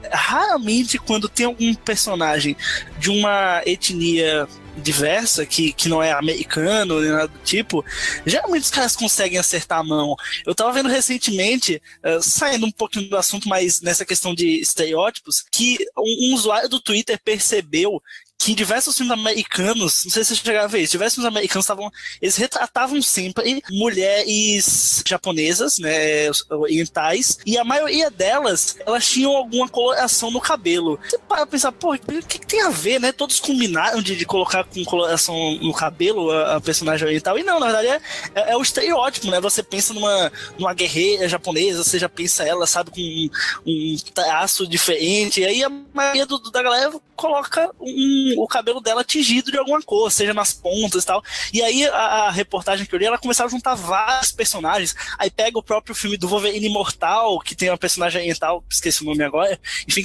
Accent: Brazilian